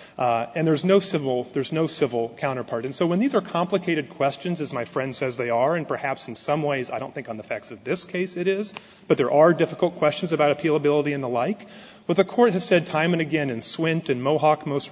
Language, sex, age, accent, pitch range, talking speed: English, male, 30-49, American, 130-175 Hz, 245 wpm